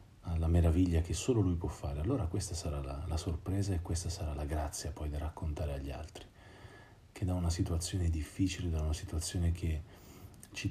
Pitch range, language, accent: 80-95 Hz, Italian, native